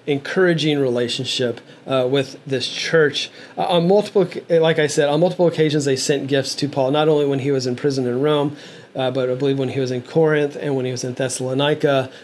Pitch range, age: 130-160 Hz, 30-49